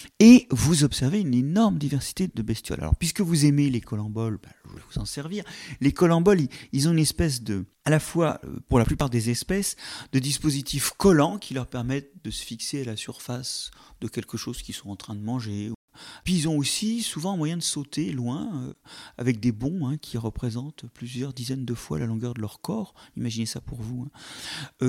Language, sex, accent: French, male, French